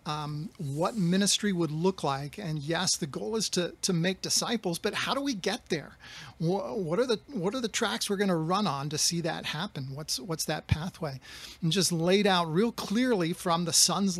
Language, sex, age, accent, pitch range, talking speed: English, male, 40-59, American, 150-190 Hz, 215 wpm